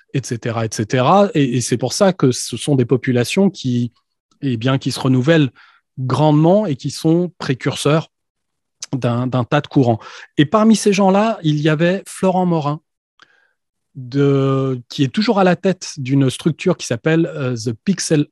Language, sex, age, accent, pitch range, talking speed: French, male, 30-49, French, 135-180 Hz, 165 wpm